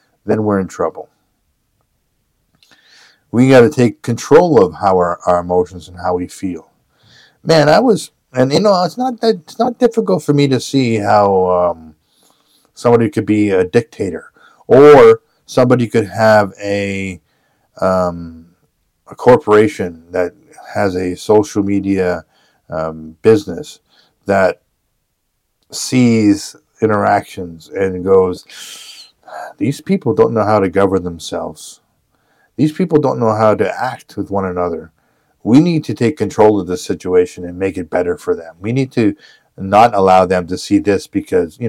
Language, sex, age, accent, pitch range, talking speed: English, male, 50-69, American, 90-115 Hz, 150 wpm